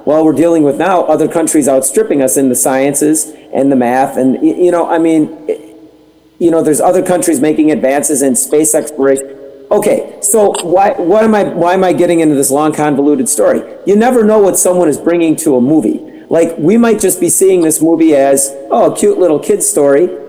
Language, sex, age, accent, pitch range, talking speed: English, male, 40-59, American, 145-190 Hz, 205 wpm